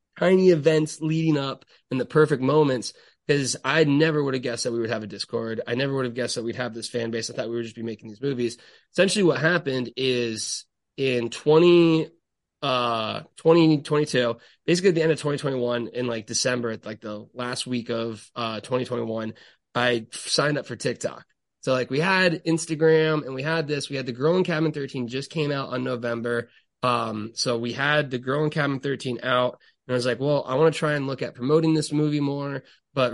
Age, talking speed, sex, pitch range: 20-39, 210 wpm, male, 120-150 Hz